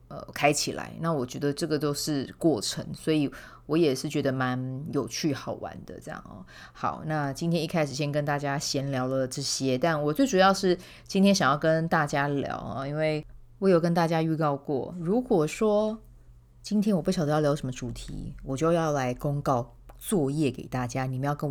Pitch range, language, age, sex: 130-165 Hz, Chinese, 20-39, female